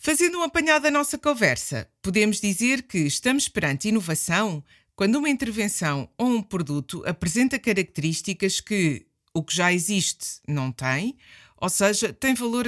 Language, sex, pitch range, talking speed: Portuguese, female, 165-230 Hz, 145 wpm